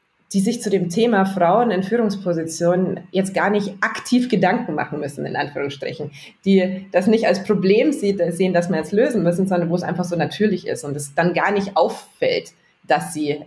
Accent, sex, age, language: German, female, 20-39, German